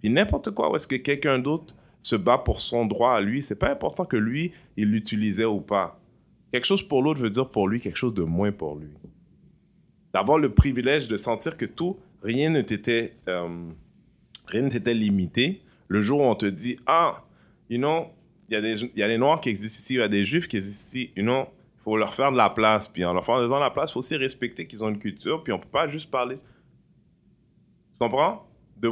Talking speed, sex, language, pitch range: 230 wpm, male, French, 105-130 Hz